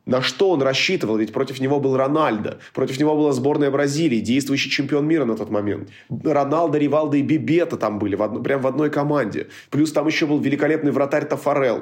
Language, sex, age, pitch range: Russian, male, 20-39, 125-155 Hz